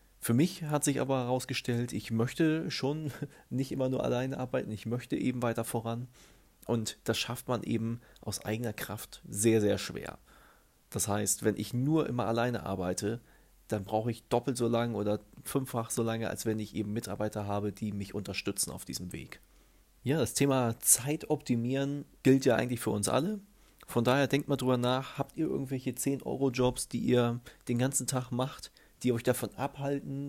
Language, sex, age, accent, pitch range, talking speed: German, male, 30-49, German, 110-135 Hz, 180 wpm